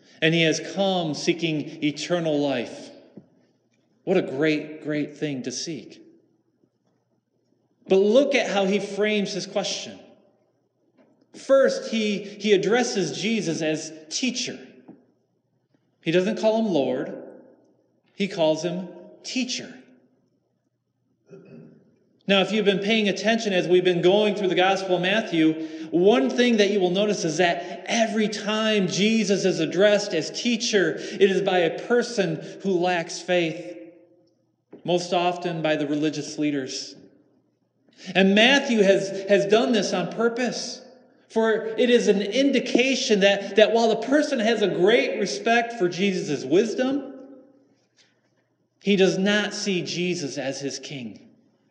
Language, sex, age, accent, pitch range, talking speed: English, male, 30-49, American, 170-220 Hz, 135 wpm